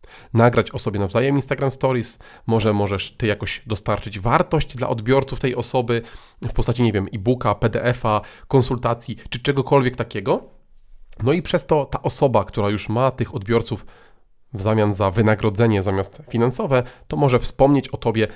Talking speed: 155 wpm